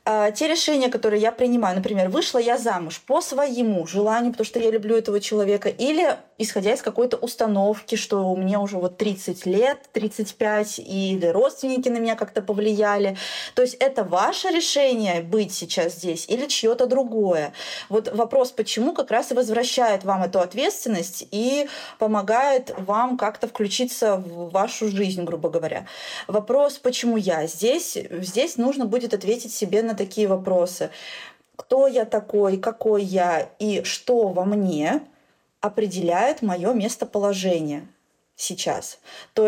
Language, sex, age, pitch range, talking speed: Russian, female, 20-39, 190-245 Hz, 145 wpm